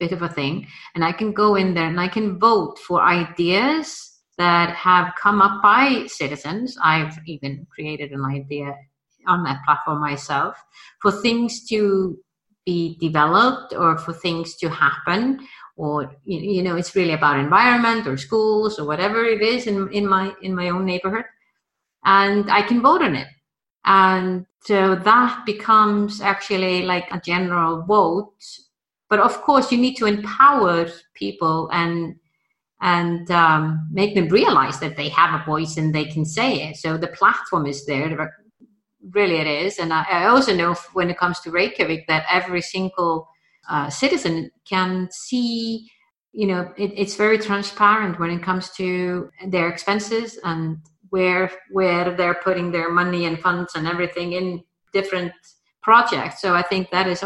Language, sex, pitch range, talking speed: English, female, 165-205 Hz, 165 wpm